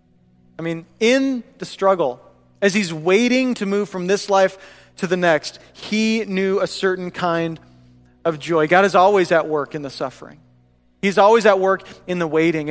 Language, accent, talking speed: English, American, 180 wpm